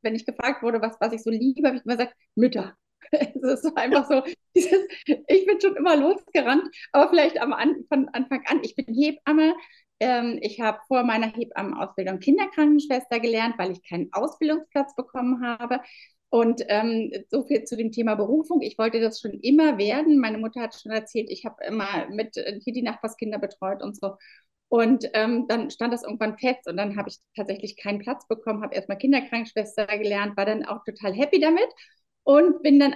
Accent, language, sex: German, German, female